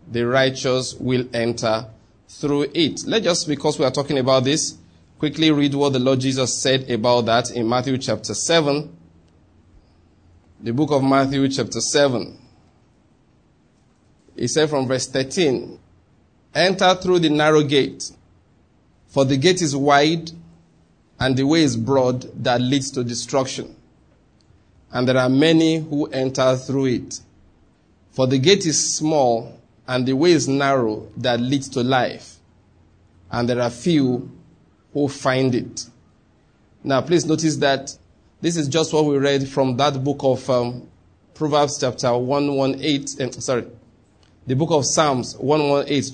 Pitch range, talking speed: 120-145 Hz, 145 wpm